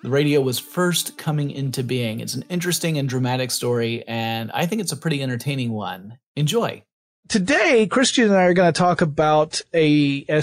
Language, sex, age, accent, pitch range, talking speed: English, male, 30-49, American, 145-195 Hz, 190 wpm